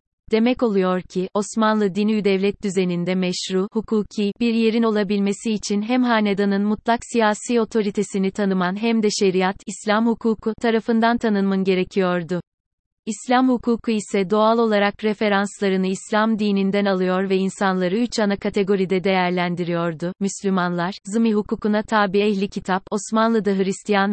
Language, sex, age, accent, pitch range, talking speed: Turkish, female, 30-49, native, 190-225 Hz, 125 wpm